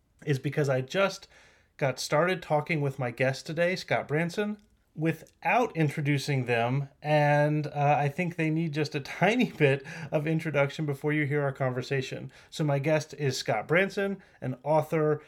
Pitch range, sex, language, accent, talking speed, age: 135-165 Hz, male, English, American, 160 wpm, 30-49